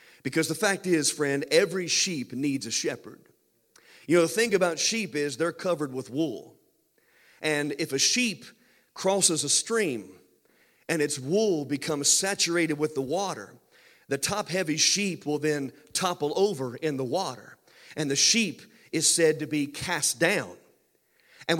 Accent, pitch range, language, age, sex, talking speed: American, 150-195 Hz, English, 40-59, male, 155 wpm